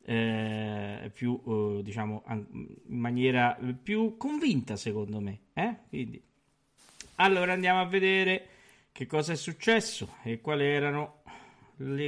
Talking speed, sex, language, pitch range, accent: 120 wpm, male, Italian, 115-175 Hz, native